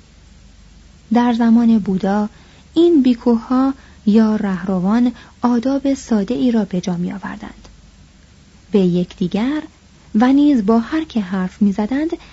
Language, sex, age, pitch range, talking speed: Persian, female, 30-49, 180-235 Hz, 115 wpm